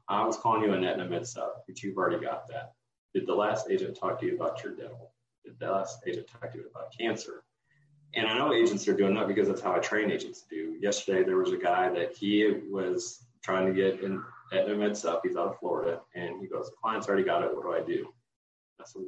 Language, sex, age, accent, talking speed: English, male, 40-59, American, 250 wpm